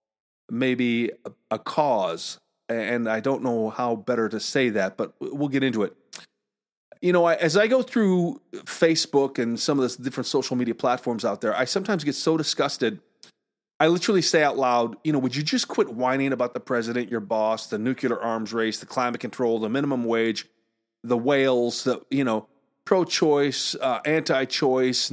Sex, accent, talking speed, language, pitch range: male, American, 180 wpm, English, 120-170 Hz